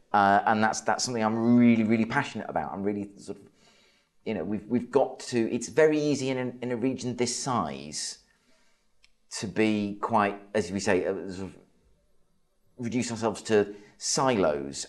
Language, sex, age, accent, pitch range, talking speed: English, male, 30-49, British, 85-110 Hz, 175 wpm